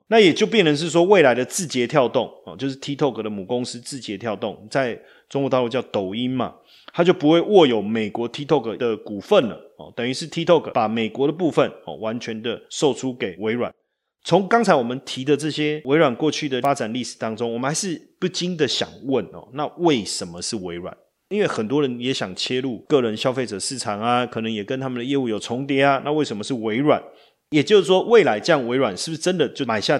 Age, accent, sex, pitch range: 30-49, native, male, 115-150 Hz